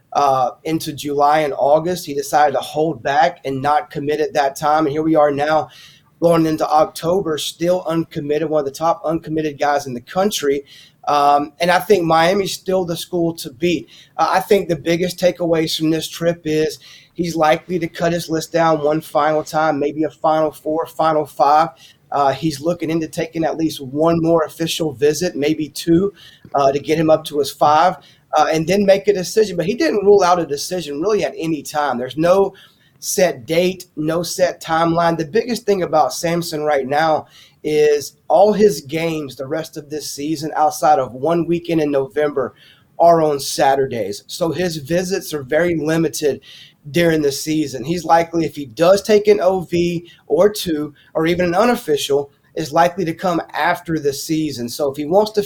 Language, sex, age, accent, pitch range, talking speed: English, male, 30-49, American, 150-175 Hz, 190 wpm